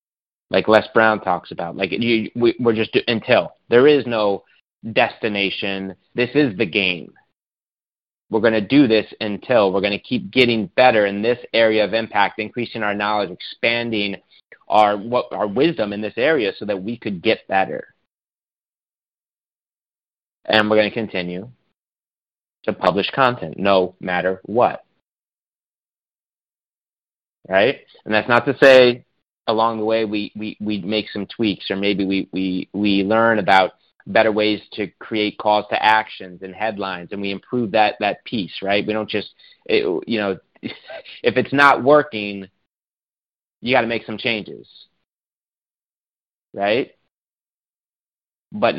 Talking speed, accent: 145 wpm, American